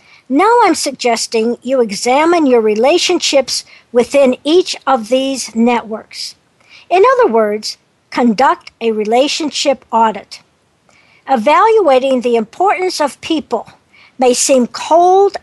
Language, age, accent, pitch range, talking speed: English, 60-79, American, 235-330 Hz, 105 wpm